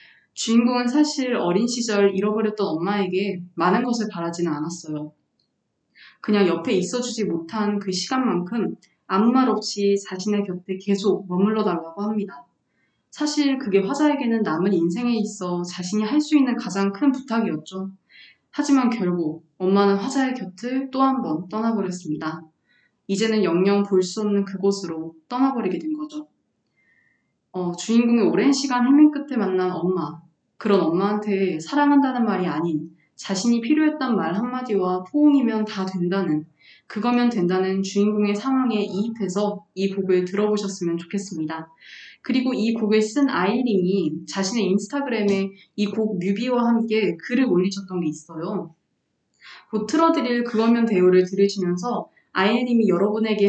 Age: 20-39